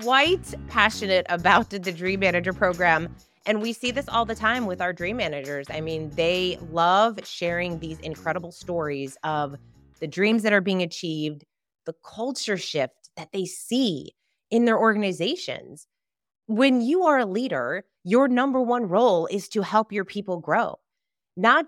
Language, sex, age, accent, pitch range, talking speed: English, female, 30-49, American, 180-235 Hz, 165 wpm